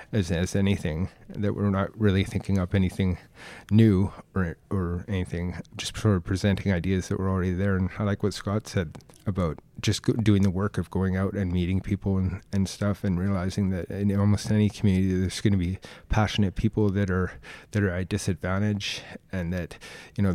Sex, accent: male, American